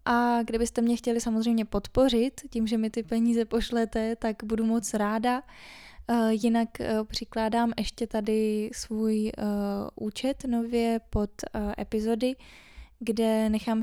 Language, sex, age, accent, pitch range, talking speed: Czech, female, 10-29, native, 210-230 Hz, 115 wpm